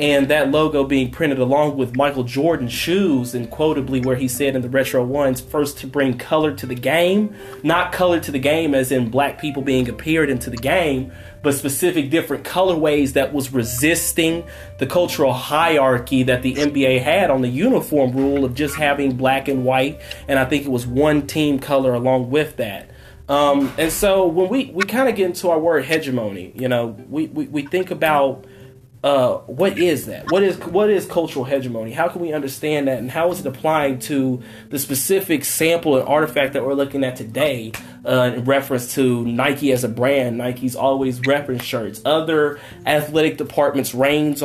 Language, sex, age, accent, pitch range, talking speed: English, male, 30-49, American, 130-155 Hz, 190 wpm